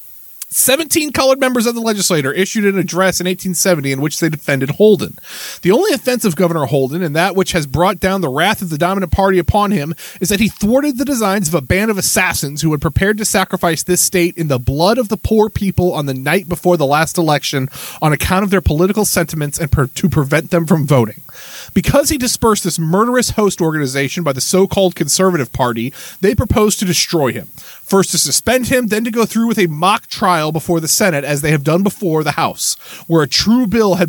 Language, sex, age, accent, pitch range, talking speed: English, male, 30-49, American, 160-210 Hz, 220 wpm